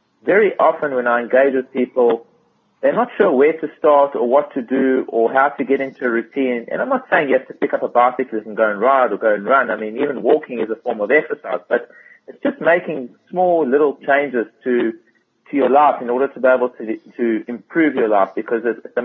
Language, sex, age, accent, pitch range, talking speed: English, male, 30-49, Australian, 120-145 Hz, 240 wpm